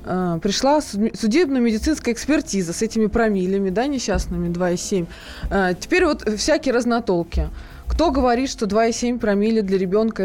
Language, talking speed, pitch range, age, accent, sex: Russian, 125 wpm, 190-240 Hz, 20-39, native, female